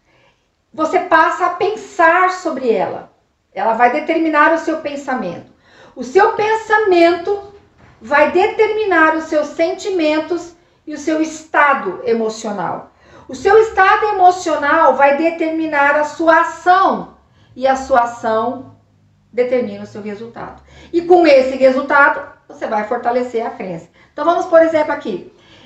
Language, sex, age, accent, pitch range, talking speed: Portuguese, female, 50-69, Brazilian, 260-350 Hz, 130 wpm